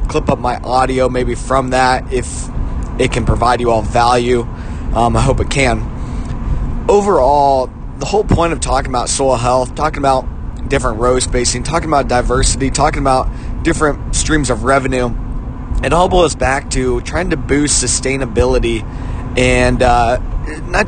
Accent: American